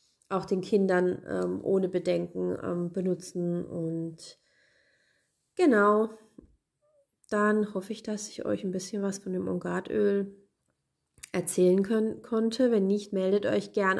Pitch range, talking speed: 180-220 Hz, 130 wpm